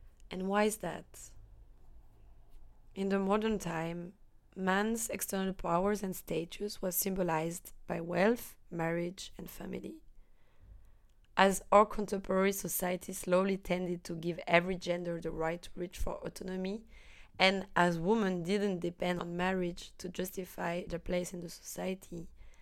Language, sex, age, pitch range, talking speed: French, female, 20-39, 165-190 Hz, 135 wpm